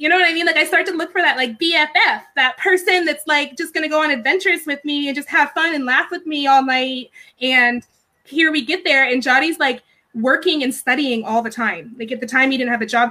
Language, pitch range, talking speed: English, 245-315 Hz, 265 wpm